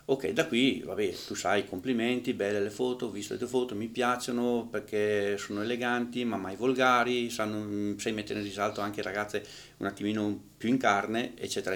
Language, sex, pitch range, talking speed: Italian, male, 105-130 Hz, 185 wpm